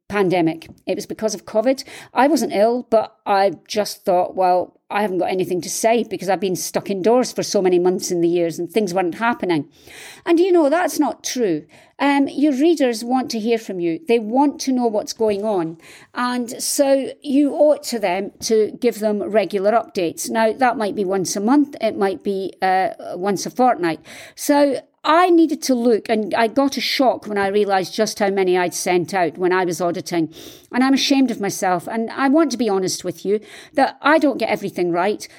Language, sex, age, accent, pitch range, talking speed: English, female, 50-69, British, 190-275 Hz, 210 wpm